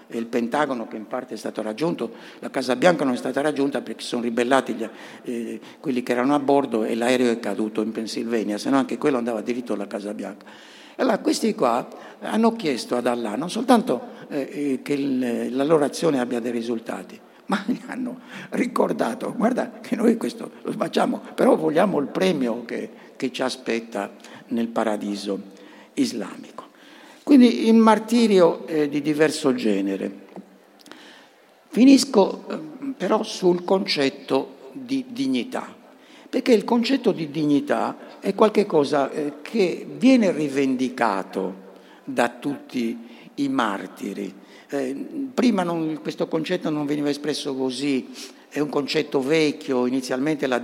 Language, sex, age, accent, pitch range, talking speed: Italian, male, 60-79, native, 120-195 Hz, 150 wpm